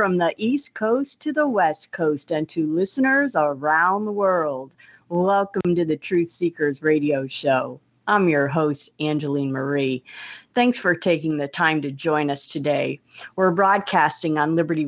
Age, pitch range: 50-69, 150-210 Hz